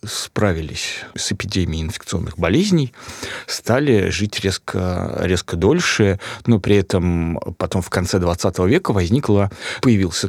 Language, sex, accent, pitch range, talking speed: Russian, male, native, 95-115 Hz, 115 wpm